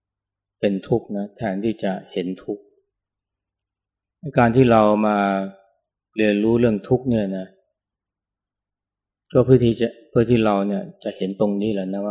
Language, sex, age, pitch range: Thai, male, 20-39, 100-115 Hz